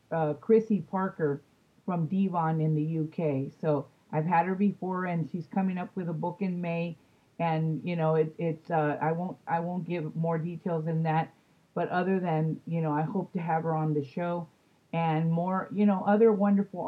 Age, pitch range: 40-59, 160-185 Hz